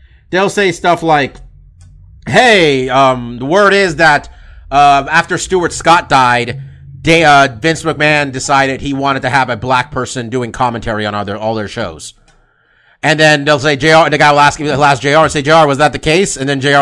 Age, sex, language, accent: 30-49, male, English, American